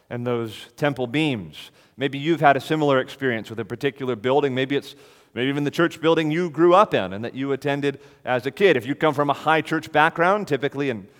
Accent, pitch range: American, 130-170 Hz